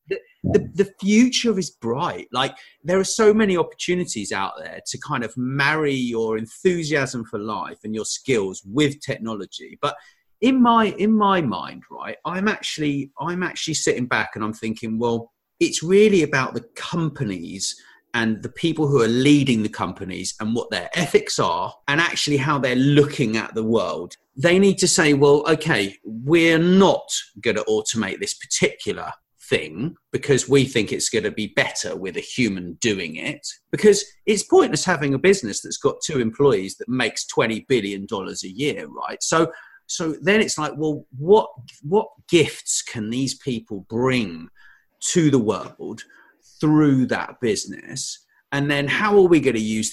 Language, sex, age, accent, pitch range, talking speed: English, male, 30-49, British, 120-190 Hz, 170 wpm